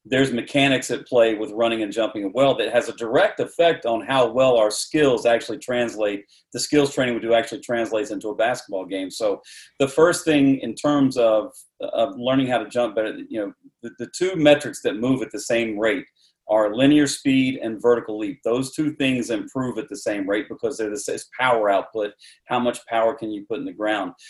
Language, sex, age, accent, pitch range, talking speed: English, male, 40-59, American, 110-140 Hz, 210 wpm